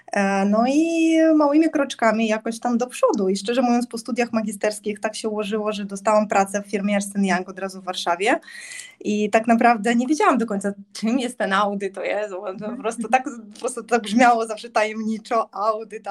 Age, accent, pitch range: 20-39, native, 200-235 Hz